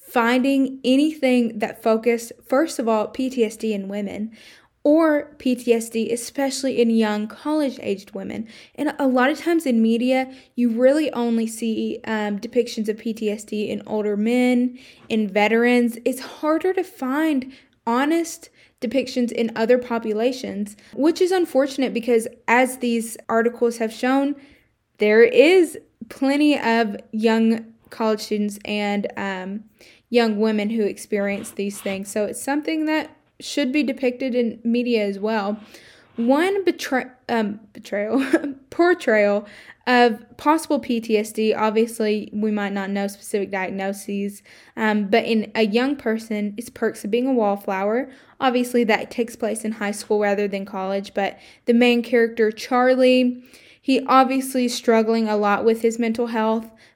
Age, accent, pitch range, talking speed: 10-29, American, 215-260 Hz, 140 wpm